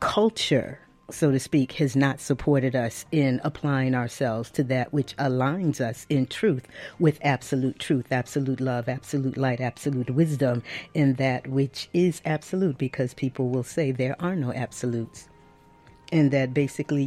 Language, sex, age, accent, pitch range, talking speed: English, female, 40-59, American, 125-145 Hz, 150 wpm